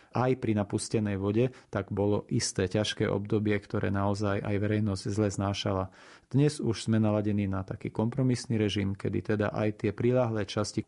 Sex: male